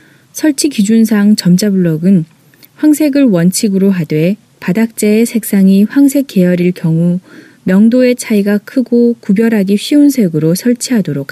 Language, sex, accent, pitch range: Korean, female, native, 165-215 Hz